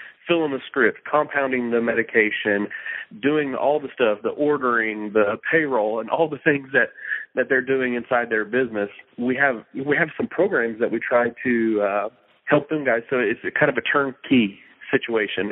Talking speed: 180 wpm